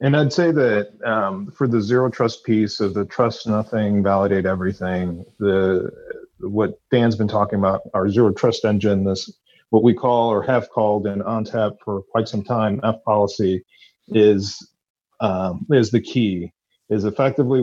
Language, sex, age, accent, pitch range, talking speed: English, male, 40-59, American, 105-125 Hz, 165 wpm